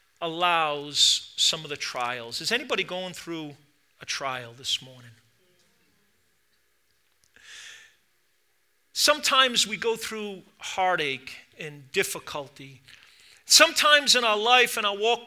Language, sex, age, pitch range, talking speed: English, male, 40-59, 180-245 Hz, 105 wpm